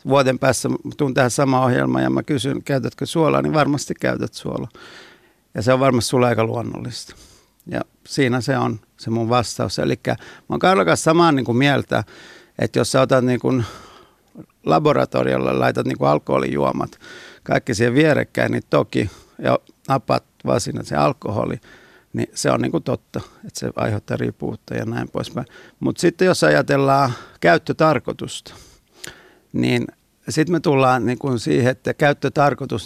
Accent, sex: native, male